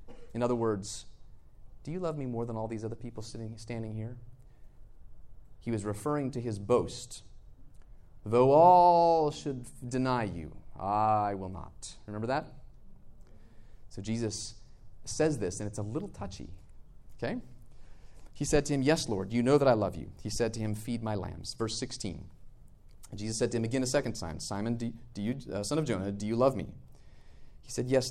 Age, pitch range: 30-49, 100-130 Hz